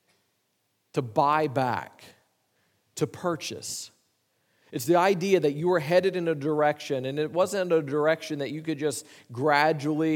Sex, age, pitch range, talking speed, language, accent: male, 40-59, 140-170 Hz, 150 wpm, English, American